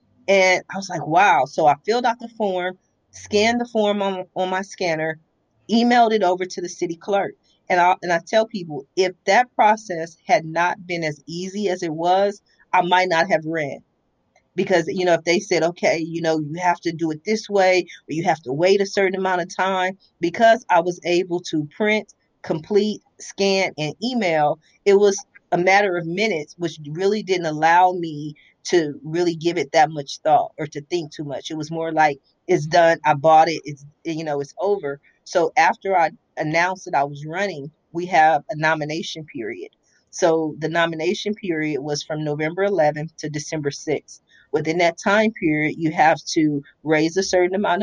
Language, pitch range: English, 155-190 Hz